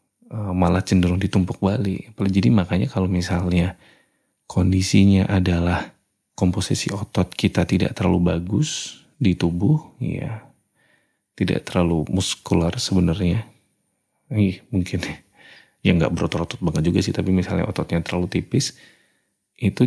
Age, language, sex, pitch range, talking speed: 30-49, English, male, 90-115 Hz, 110 wpm